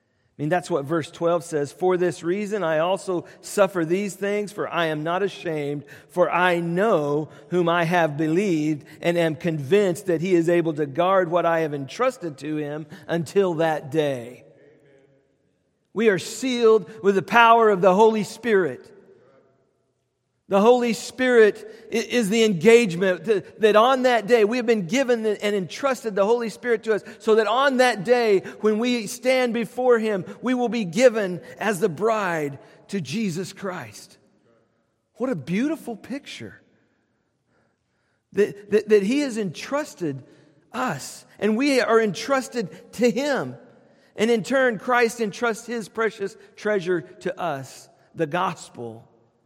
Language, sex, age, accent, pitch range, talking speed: English, male, 40-59, American, 165-225 Hz, 150 wpm